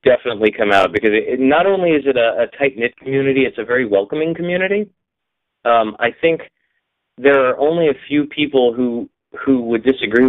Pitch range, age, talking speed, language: 110-140 Hz, 30-49, 180 wpm, English